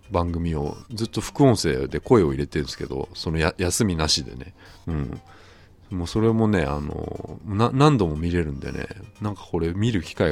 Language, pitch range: Japanese, 80-105 Hz